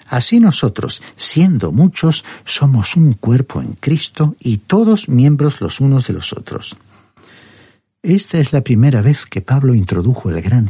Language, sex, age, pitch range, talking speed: Spanish, male, 60-79, 110-155 Hz, 150 wpm